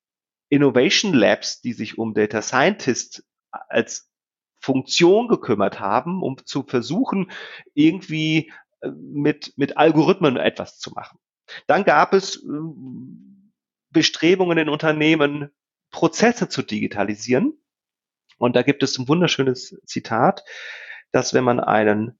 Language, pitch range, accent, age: English, 120-170 Hz, German, 40-59